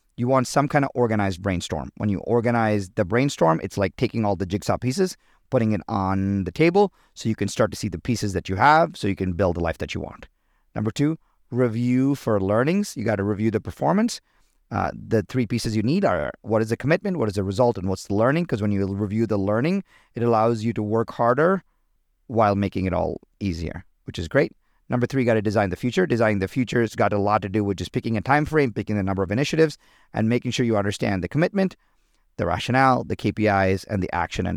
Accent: American